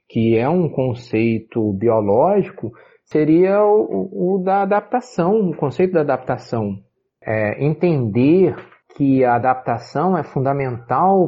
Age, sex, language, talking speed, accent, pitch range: 40-59, male, Portuguese, 105 wpm, Brazilian, 110-160 Hz